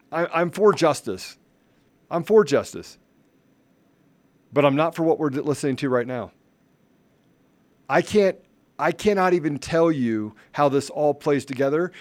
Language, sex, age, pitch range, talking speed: English, male, 40-59, 145-190 Hz, 140 wpm